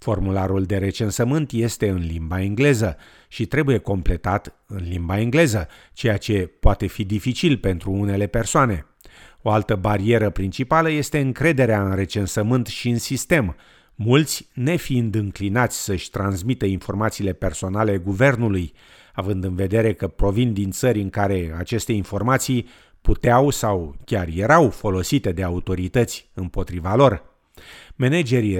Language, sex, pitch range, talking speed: Romanian, male, 95-125 Hz, 130 wpm